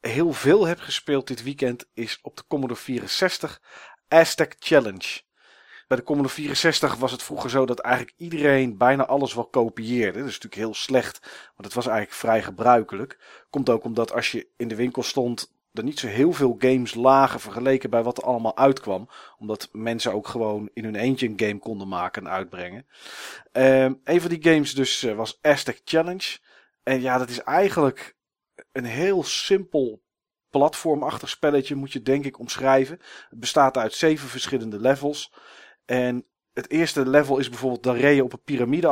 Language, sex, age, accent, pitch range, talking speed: Dutch, male, 40-59, Dutch, 115-140 Hz, 175 wpm